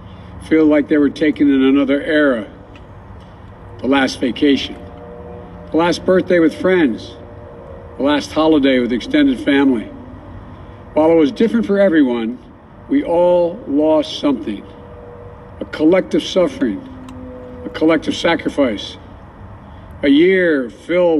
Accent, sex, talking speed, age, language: American, male, 115 wpm, 60-79, English